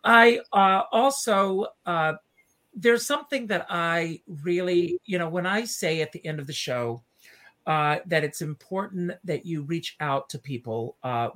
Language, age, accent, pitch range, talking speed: English, 50-69, American, 140-180 Hz, 165 wpm